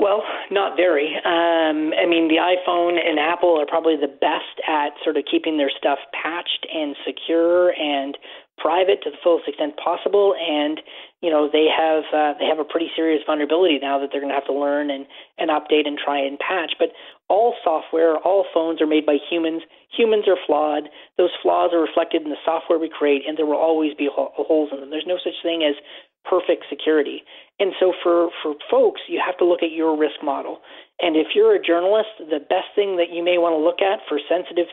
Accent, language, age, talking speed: American, English, 40-59, 215 wpm